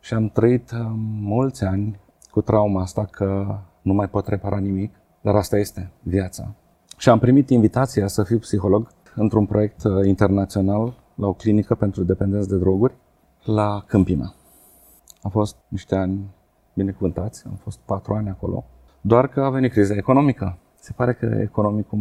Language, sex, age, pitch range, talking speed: Romanian, male, 30-49, 100-115 Hz, 155 wpm